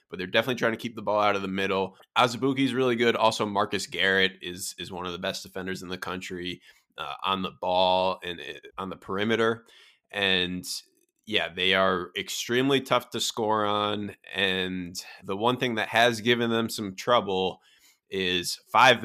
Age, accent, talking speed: 20-39, American, 185 wpm